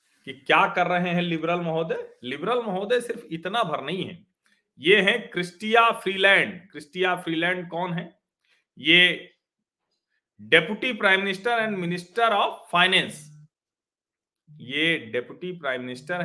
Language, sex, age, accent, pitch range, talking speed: Hindi, male, 40-59, native, 170-230 Hz, 125 wpm